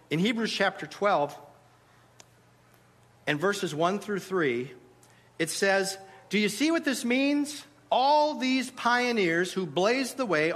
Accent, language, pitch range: American, English, 165-225 Hz